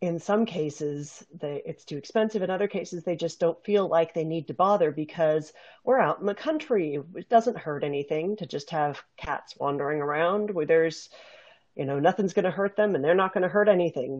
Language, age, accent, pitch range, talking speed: English, 40-59, American, 140-170 Hz, 205 wpm